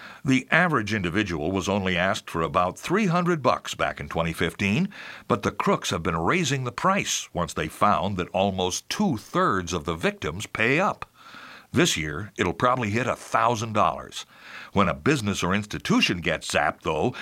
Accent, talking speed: American, 160 wpm